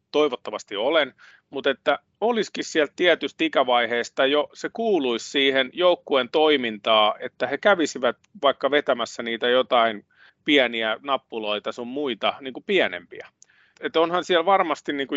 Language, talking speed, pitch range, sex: Finnish, 125 wpm, 125-170 Hz, male